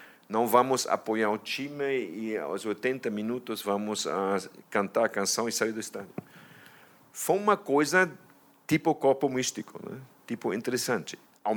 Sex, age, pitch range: male, 50-69, 105-135 Hz